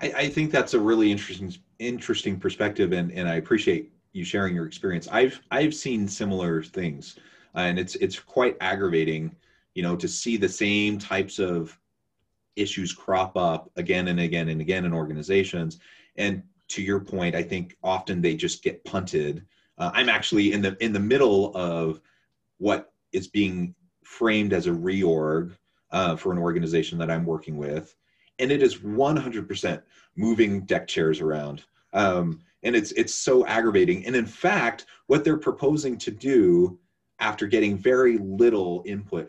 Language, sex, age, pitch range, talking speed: English, male, 30-49, 85-125 Hz, 165 wpm